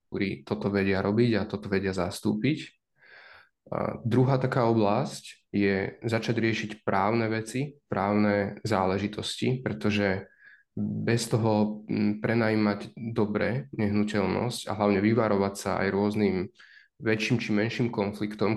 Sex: male